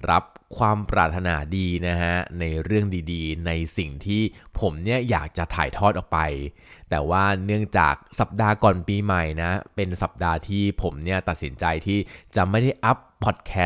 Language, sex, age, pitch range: Thai, male, 20-39, 85-105 Hz